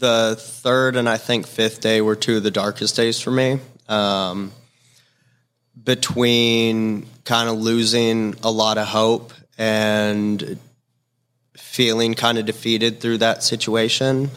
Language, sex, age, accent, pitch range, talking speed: English, male, 20-39, American, 105-125 Hz, 135 wpm